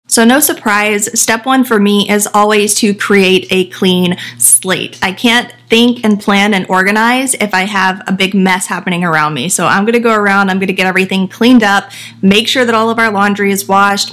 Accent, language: American, English